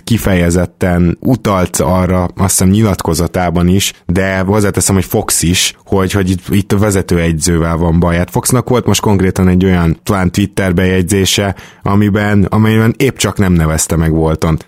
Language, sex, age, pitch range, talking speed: Hungarian, male, 20-39, 90-110 Hz, 145 wpm